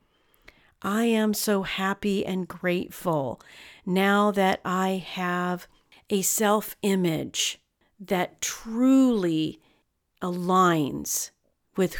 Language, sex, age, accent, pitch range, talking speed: English, female, 40-59, American, 175-215 Hz, 80 wpm